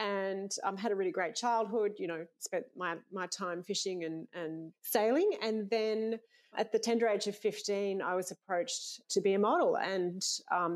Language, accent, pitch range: English, Australian, 165-200 Hz